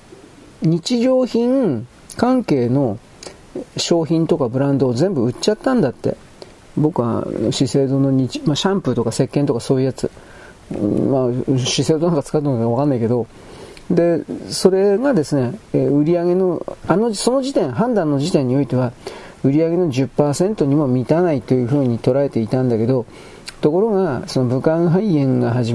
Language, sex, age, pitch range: Japanese, male, 40-59, 130-175 Hz